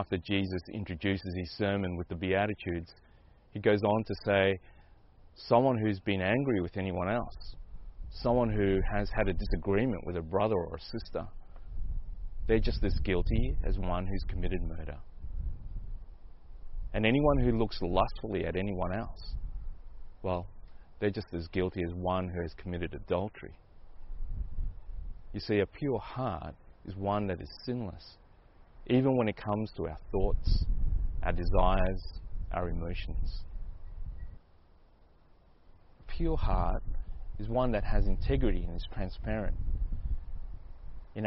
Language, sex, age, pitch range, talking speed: English, male, 30-49, 85-105 Hz, 135 wpm